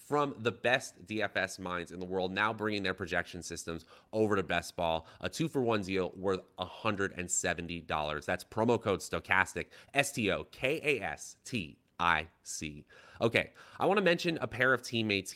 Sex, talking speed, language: male, 145 wpm, English